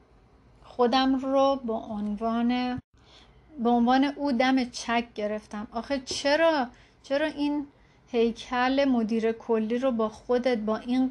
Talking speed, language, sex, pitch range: 120 wpm, Persian, female, 225-270 Hz